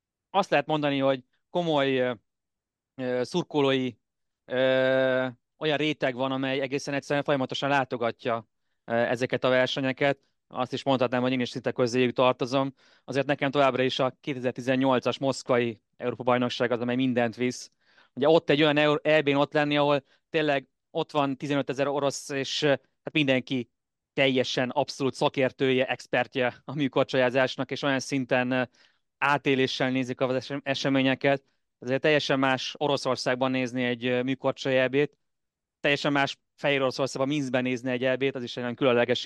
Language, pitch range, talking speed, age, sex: Hungarian, 125-145 Hz, 135 wpm, 30-49, male